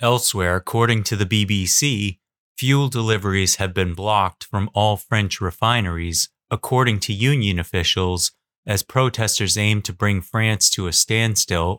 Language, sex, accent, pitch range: English, male, American, 95-120 Hz